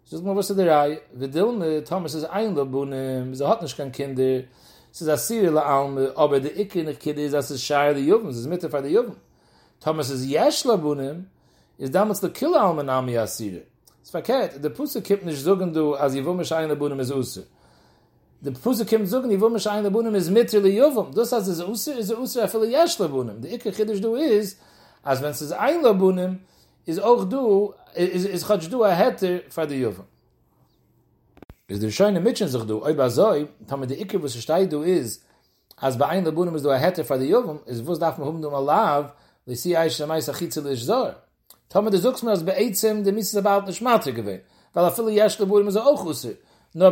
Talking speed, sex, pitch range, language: 30 wpm, male, 145-205 Hz, English